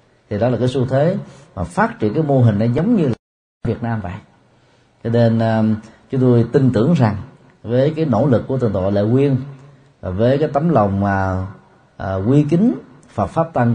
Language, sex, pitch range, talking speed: Vietnamese, male, 105-135 Hz, 215 wpm